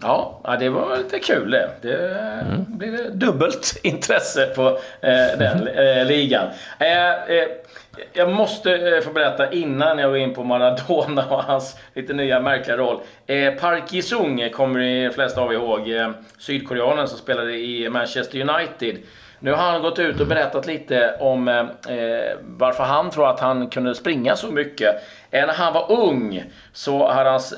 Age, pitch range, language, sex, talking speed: 40-59, 125-155 Hz, Swedish, male, 150 wpm